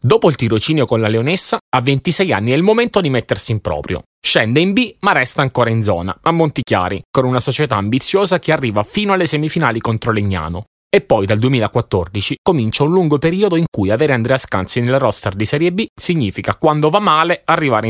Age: 30-49